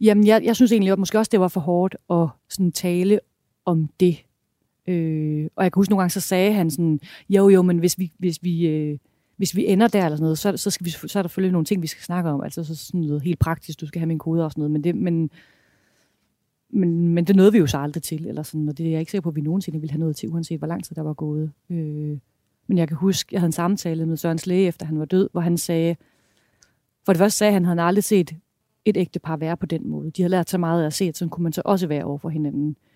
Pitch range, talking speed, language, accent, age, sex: 160-185 Hz, 290 wpm, Danish, native, 30-49, female